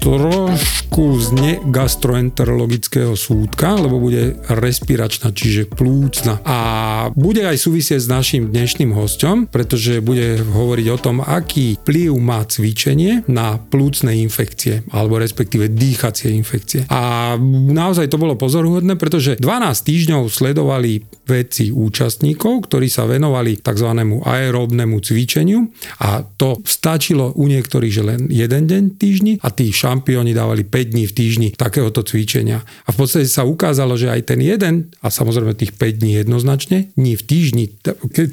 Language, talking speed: Slovak, 140 wpm